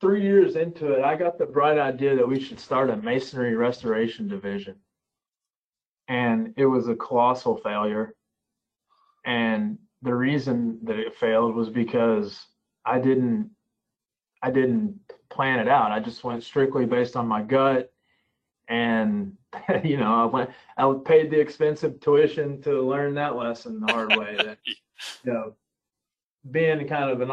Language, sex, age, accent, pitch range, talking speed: English, male, 30-49, American, 115-140 Hz, 155 wpm